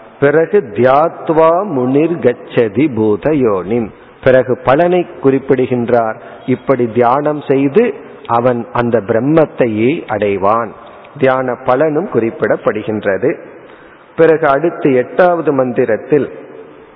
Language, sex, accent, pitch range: Tamil, male, native, 120-155 Hz